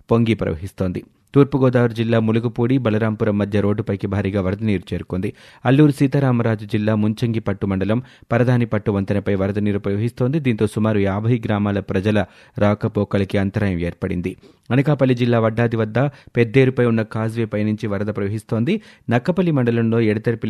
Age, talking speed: 30-49, 115 wpm